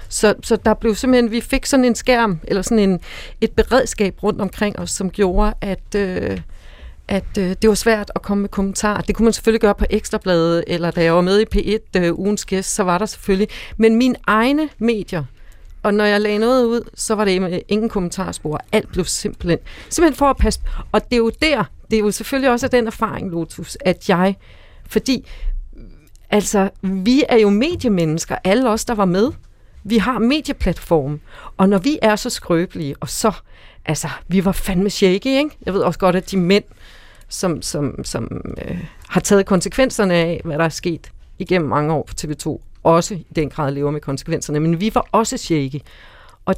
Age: 40-59